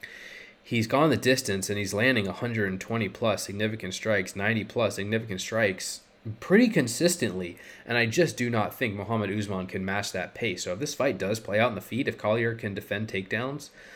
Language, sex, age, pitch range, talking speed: English, male, 20-39, 100-120 Hz, 180 wpm